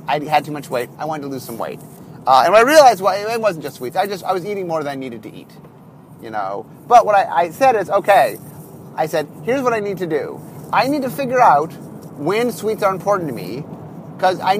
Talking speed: 255 wpm